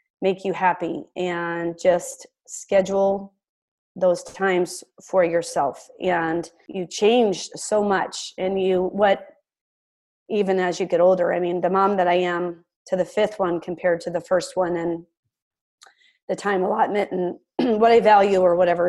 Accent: American